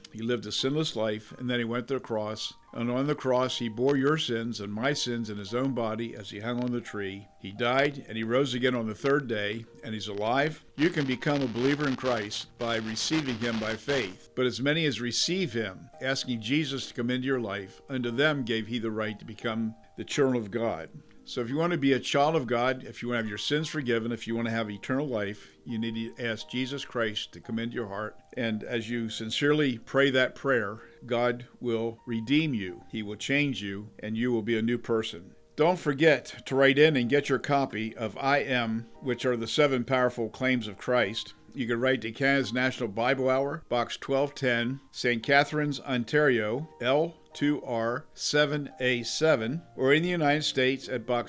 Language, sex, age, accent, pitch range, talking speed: English, male, 50-69, American, 115-140 Hz, 215 wpm